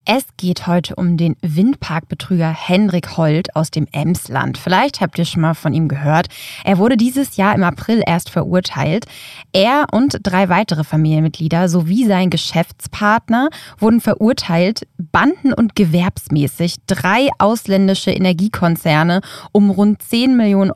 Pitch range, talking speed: 175-215 Hz, 135 wpm